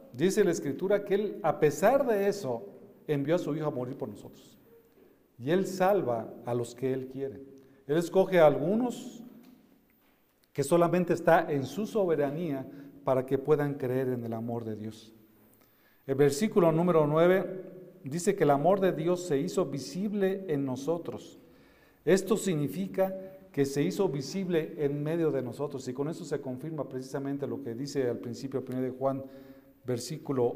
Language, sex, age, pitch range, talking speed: Spanish, male, 50-69, 130-170 Hz, 165 wpm